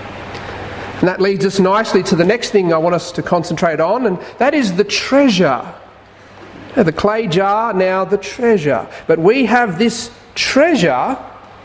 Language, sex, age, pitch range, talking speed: English, male, 40-59, 135-225 Hz, 160 wpm